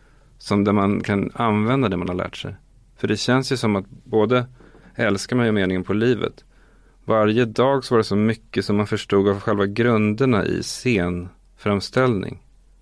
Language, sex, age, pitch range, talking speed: Swedish, male, 30-49, 95-115 Hz, 180 wpm